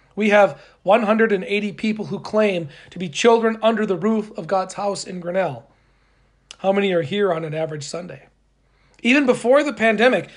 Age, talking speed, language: 40-59, 170 wpm, English